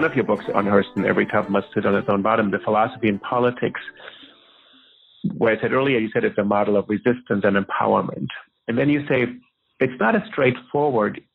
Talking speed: 205 wpm